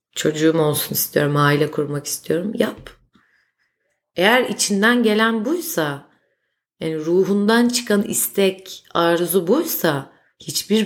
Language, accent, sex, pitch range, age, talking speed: Turkish, native, female, 160-200 Hz, 30-49, 100 wpm